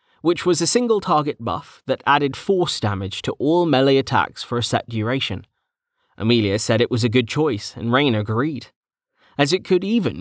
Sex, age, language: male, 30-49, English